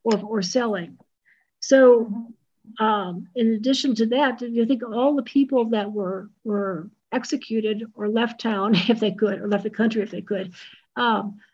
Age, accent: 50-69, American